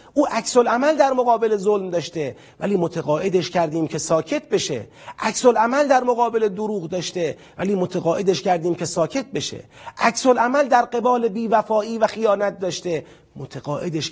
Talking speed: 145 wpm